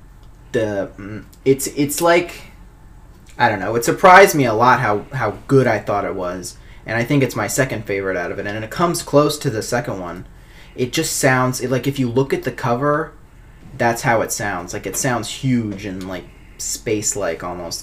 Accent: American